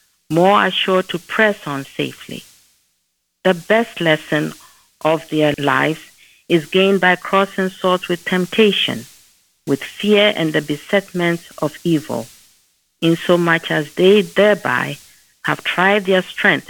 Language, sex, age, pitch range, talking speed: English, female, 50-69, 155-195 Hz, 120 wpm